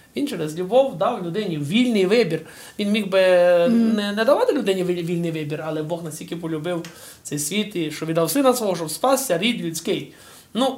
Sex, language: male, Ukrainian